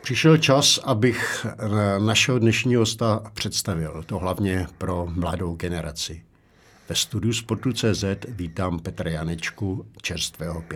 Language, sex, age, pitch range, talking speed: Czech, male, 60-79, 85-105 Hz, 110 wpm